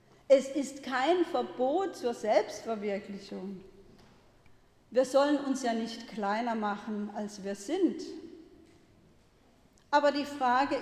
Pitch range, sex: 215-290 Hz, female